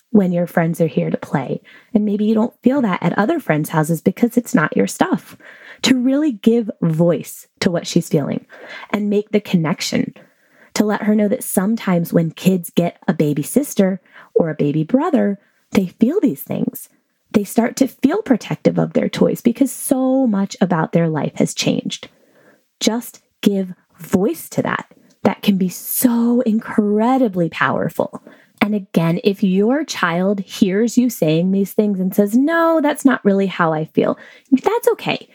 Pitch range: 180-245 Hz